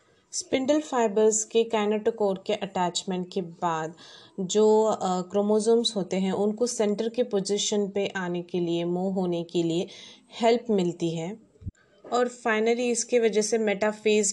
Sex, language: female, Hindi